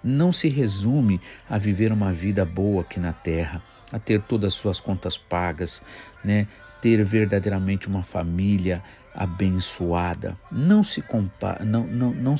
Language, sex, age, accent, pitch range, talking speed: Portuguese, male, 50-69, Brazilian, 95-120 Hz, 120 wpm